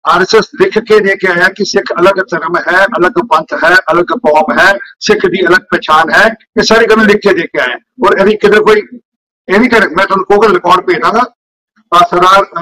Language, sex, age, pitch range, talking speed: Punjabi, male, 50-69, 210-255 Hz, 190 wpm